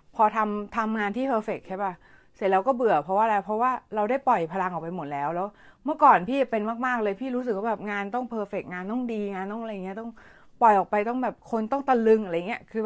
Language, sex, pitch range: Thai, female, 195-245 Hz